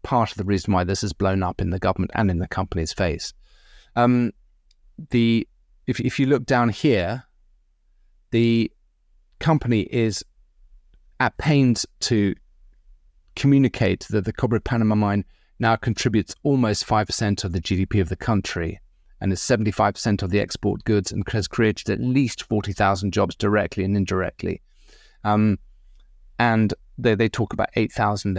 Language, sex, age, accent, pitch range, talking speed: English, male, 30-49, British, 95-115 Hz, 150 wpm